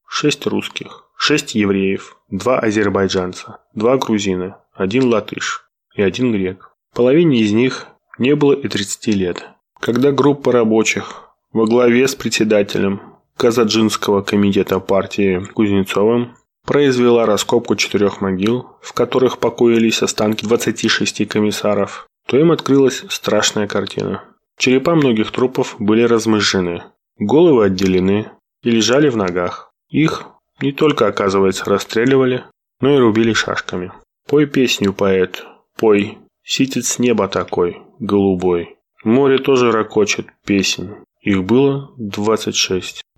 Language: Russian